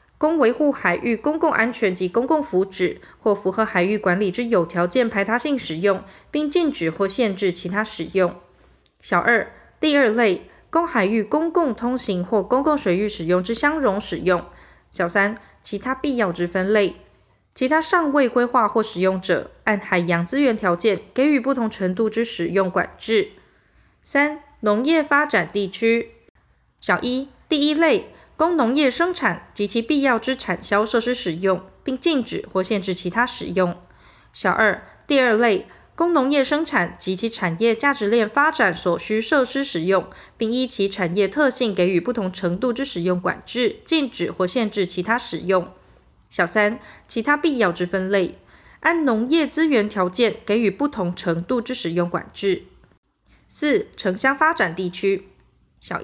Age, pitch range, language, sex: 20-39, 185-275 Hz, Chinese, female